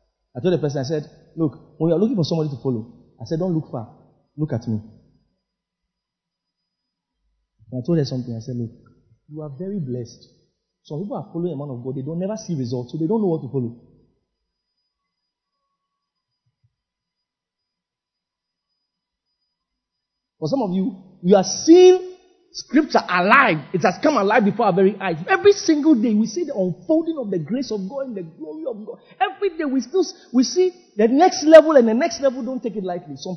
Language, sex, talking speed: English, male, 190 wpm